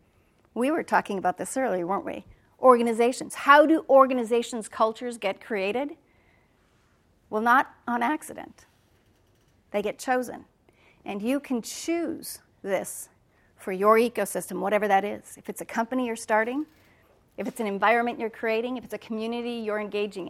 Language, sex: English, female